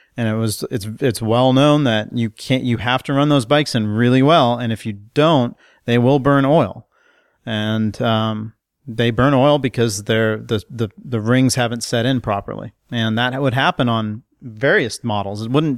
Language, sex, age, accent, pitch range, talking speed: English, male, 40-59, American, 110-130 Hz, 195 wpm